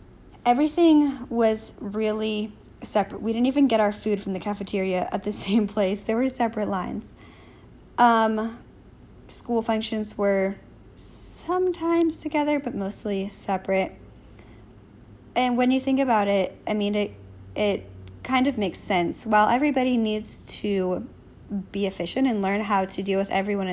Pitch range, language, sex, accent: 190-225 Hz, English, female, American